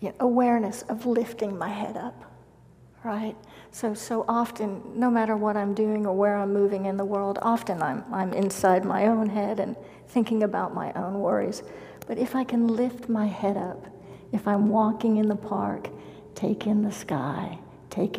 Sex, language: female, English